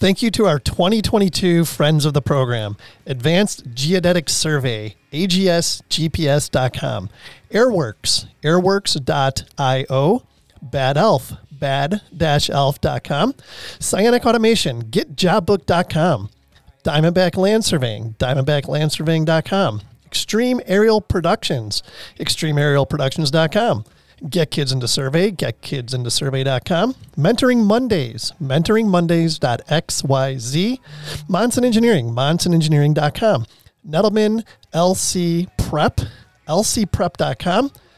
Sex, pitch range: male, 135-200 Hz